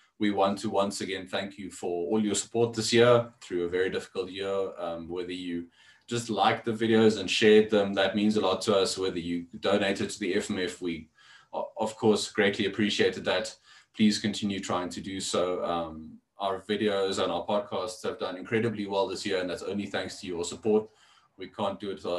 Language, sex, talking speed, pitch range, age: English, male, 205 wpm, 90-105 Hz, 20-39